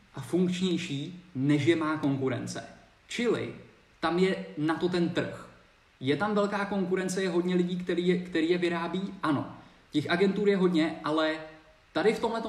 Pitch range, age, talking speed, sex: 145-180 Hz, 20-39, 165 wpm, male